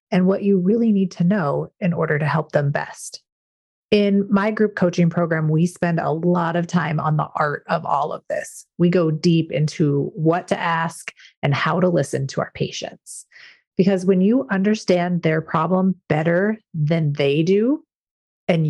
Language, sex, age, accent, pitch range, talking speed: English, female, 30-49, American, 160-195 Hz, 180 wpm